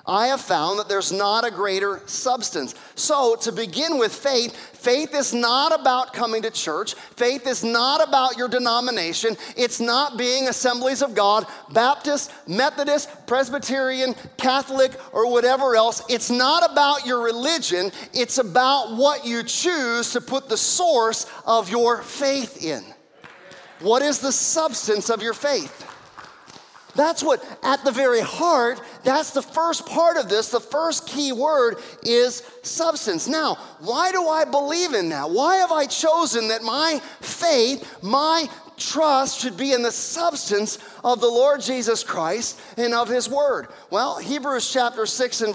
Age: 40-59